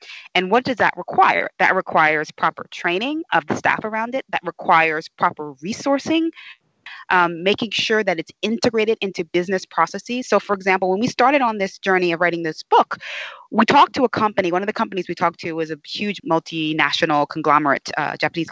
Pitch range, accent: 160-215 Hz, American